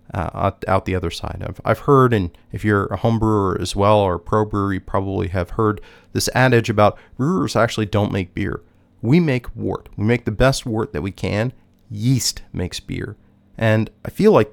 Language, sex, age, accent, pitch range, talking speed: English, male, 30-49, American, 100-120 Hz, 205 wpm